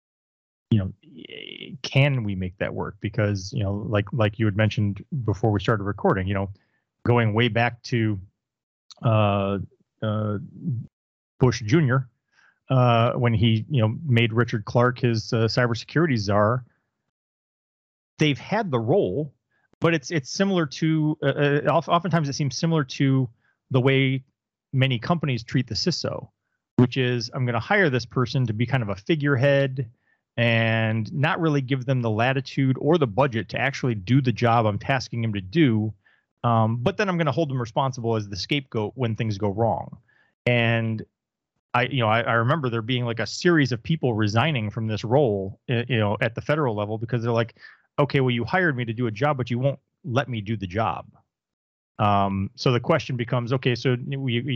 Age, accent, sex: 30-49, American, male